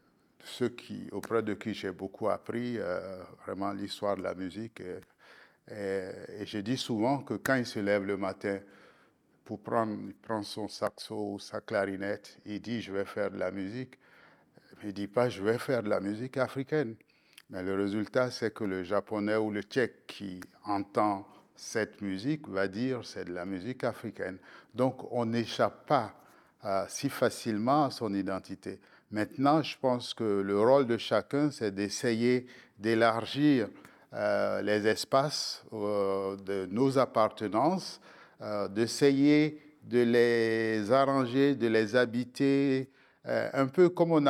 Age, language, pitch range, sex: 50-69, French, 100-125 Hz, male